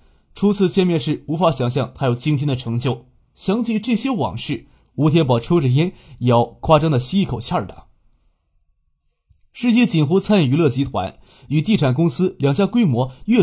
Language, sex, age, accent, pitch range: Chinese, male, 20-39, native, 120-190 Hz